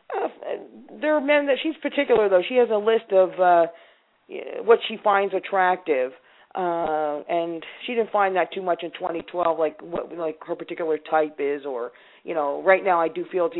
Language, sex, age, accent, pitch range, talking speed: English, female, 40-59, American, 160-190 Hz, 195 wpm